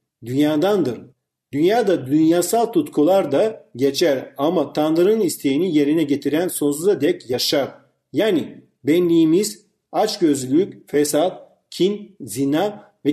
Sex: male